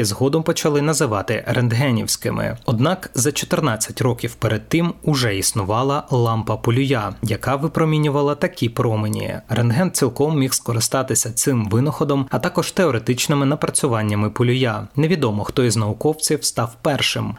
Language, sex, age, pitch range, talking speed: Ukrainian, male, 20-39, 115-145 Hz, 115 wpm